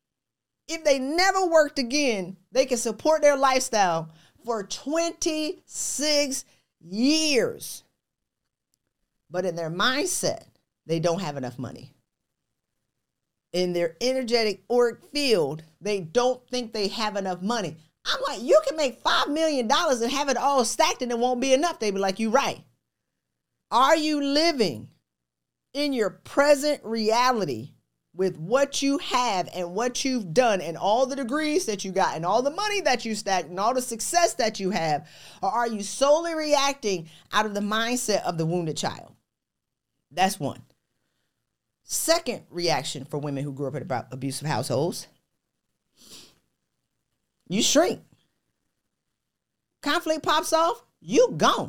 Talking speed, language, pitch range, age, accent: 145 wpm, English, 180-290 Hz, 40-59, American